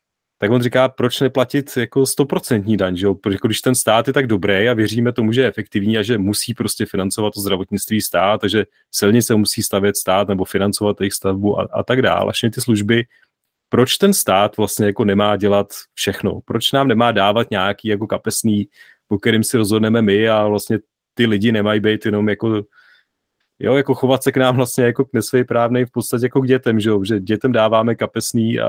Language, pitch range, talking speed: Czech, 105-120 Hz, 180 wpm